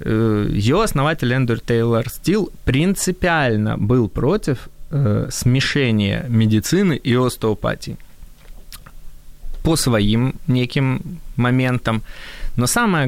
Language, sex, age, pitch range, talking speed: Ukrainian, male, 20-39, 110-135 Hz, 85 wpm